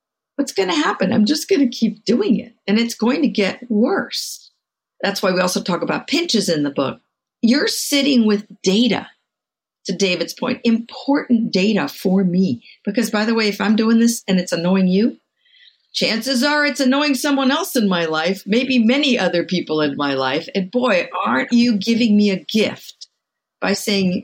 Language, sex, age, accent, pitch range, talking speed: English, female, 50-69, American, 185-245 Hz, 190 wpm